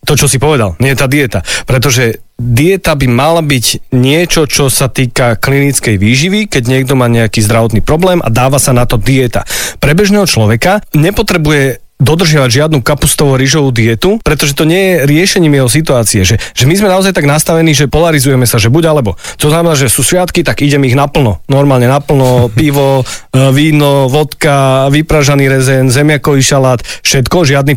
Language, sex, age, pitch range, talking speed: Slovak, male, 30-49, 130-165 Hz, 170 wpm